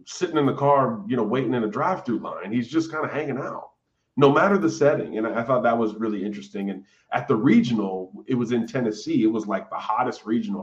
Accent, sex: American, male